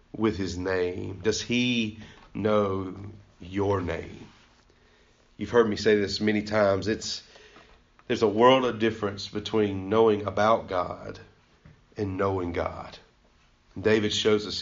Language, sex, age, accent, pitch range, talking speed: English, male, 40-59, American, 95-120 Hz, 125 wpm